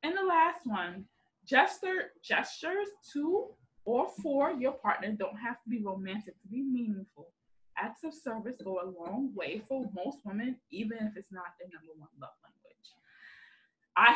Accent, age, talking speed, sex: American, 20-39, 165 wpm, female